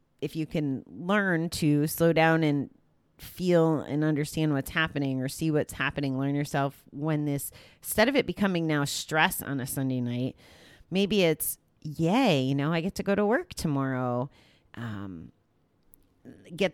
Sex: female